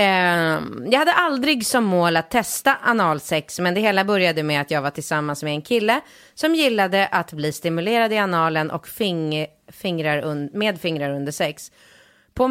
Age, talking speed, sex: 30-49, 165 wpm, female